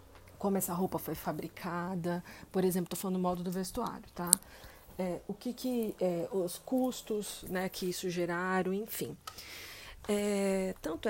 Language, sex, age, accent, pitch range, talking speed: Portuguese, female, 40-59, Brazilian, 175-205 Hz, 150 wpm